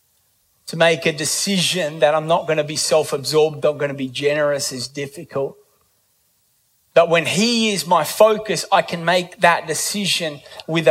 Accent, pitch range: Australian, 130-185 Hz